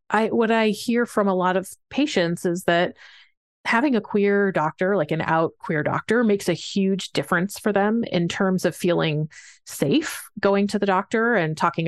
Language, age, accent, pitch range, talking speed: English, 30-49, American, 170-210 Hz, 185 wpm